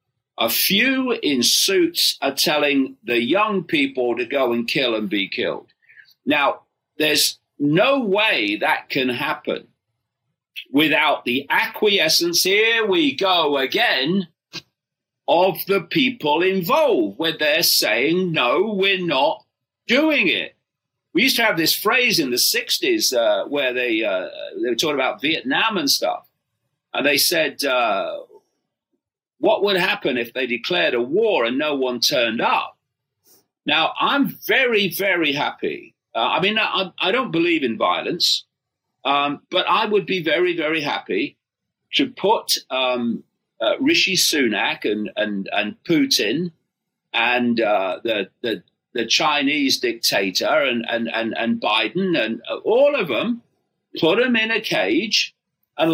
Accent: British